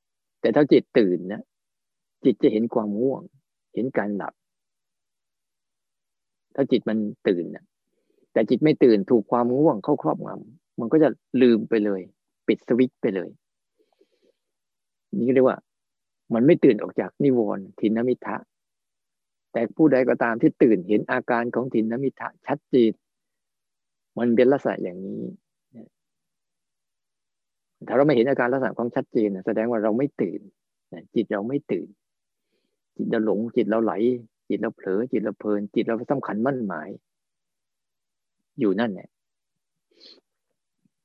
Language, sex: Thai, male